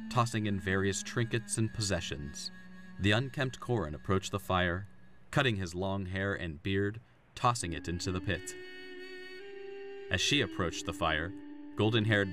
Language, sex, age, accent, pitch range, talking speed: English, male, 30-49, American, 95-125 Hz, 140 wpm